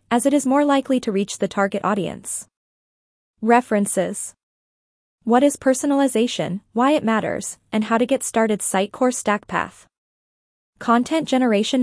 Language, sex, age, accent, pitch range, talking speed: English, female, 20-39, American, 205-260 Hz, 140 wpm